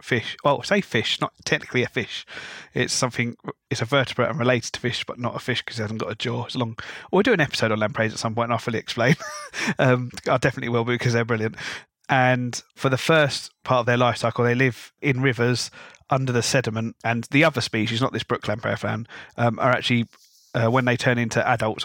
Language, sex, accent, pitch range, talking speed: English, male, British, 115-140 Hz, 235 wpm